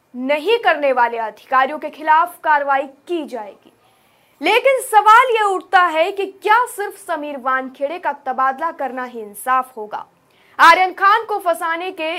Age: 20-39